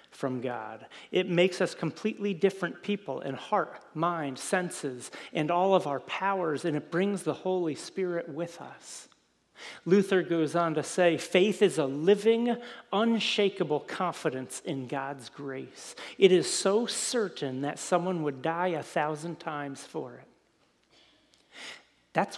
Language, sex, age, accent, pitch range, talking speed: English, male, 40-59, American, 145-190 Hz, 140 wpm